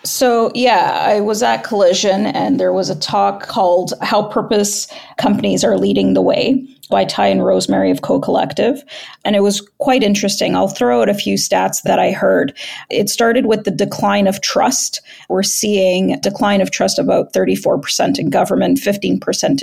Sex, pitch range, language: female, 185-250 Hz, English